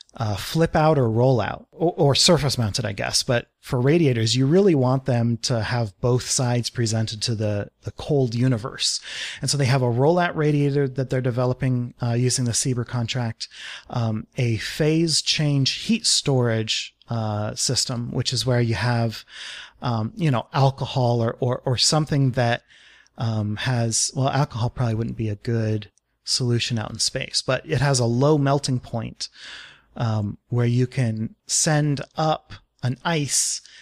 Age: 30-49